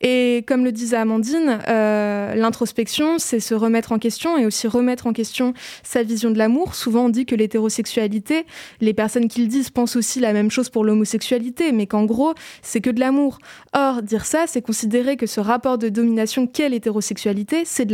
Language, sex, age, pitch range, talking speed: French, female, 20-39, 215-255 Hz, 195 wpm